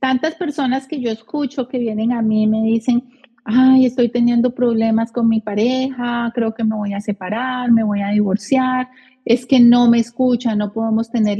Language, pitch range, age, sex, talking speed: Spanish, 220-250 Hz, 40-59, female, 190 wpm